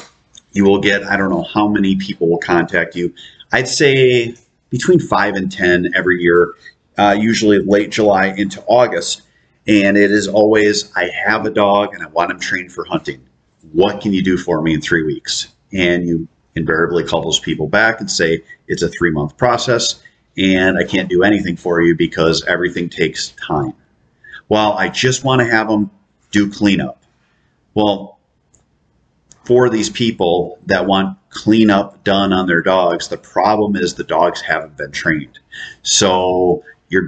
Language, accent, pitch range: English, American, 90-105 Hz